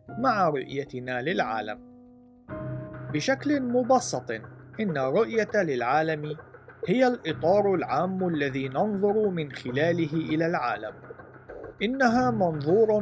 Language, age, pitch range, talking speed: Arabic, 40-59, 130-195 Hz, 90 wpm